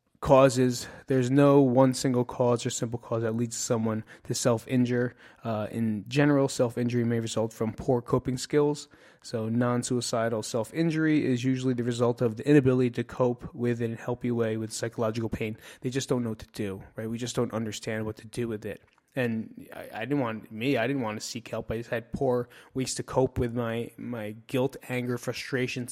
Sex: male